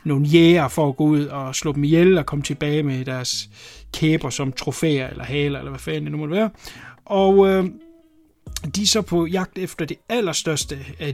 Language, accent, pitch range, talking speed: English, Danish, 135-180 Hz, 200 wpm